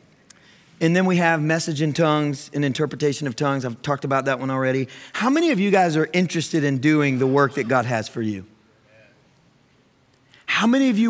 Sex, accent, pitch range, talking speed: male, American, 130-160 Hz, 200 wpm